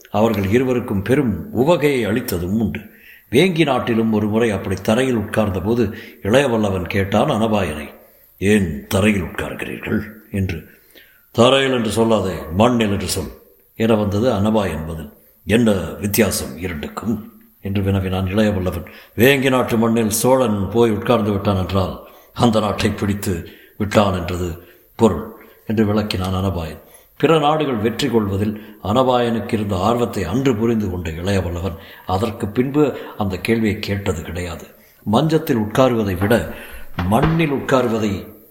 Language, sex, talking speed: Tamil, male, 115 wpm